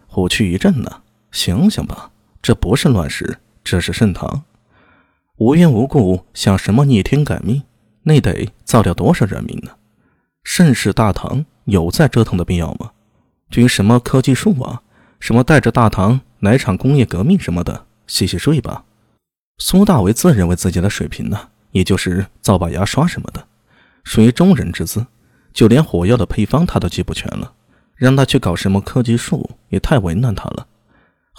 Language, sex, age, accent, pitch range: Chinese, male, 20-39, native, 95-130 Hz